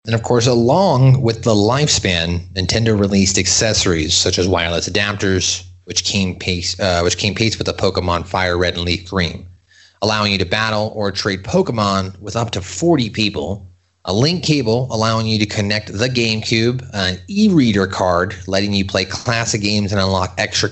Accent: American